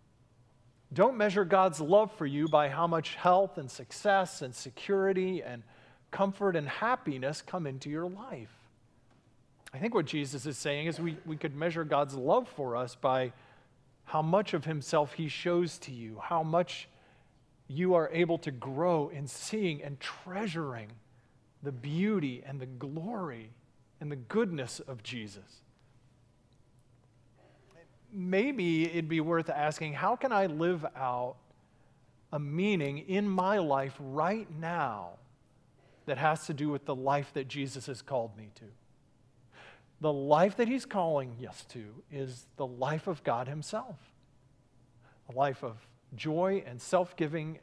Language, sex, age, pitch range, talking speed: English, male, 40-59, 125-170 Hz, 145 wpm